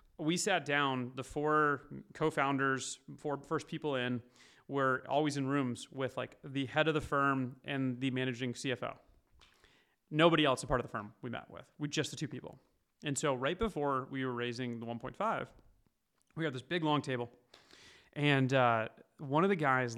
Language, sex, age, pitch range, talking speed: English, male, 30-49, 130-155 Hz, 185 wpm